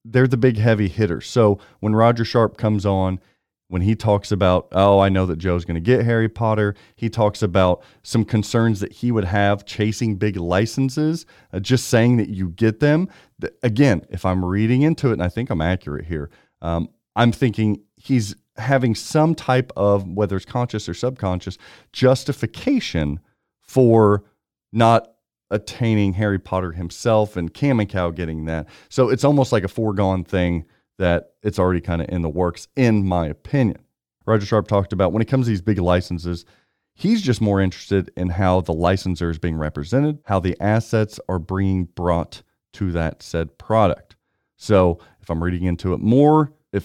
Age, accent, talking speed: 40-59, American, 180 wpm